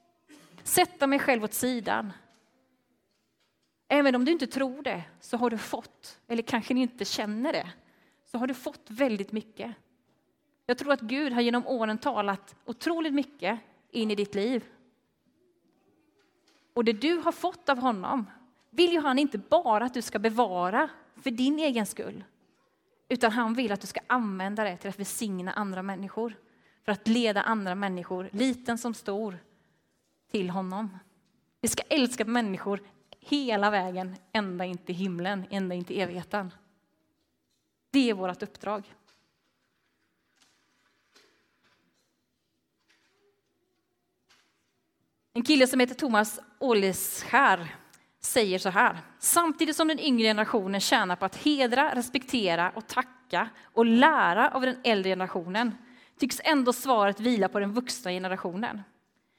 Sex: female